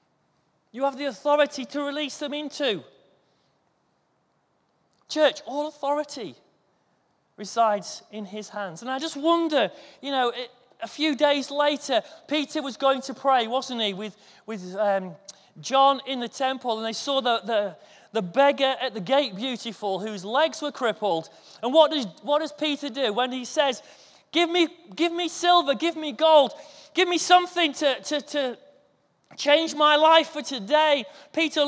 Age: 30-49